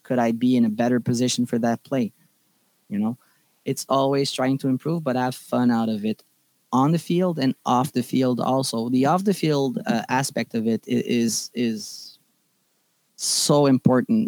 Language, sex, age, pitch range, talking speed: English, male, 20-39, 120-145 Hz, 180 wpm